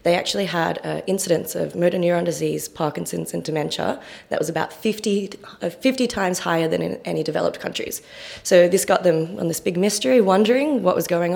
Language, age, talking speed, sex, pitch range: English, 20-39, 195 wpm, female, 165-210 Hz